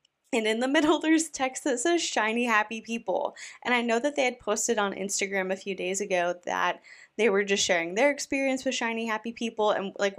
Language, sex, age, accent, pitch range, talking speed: English, female, 20-39, American, 180-235 Hz, 220 wpm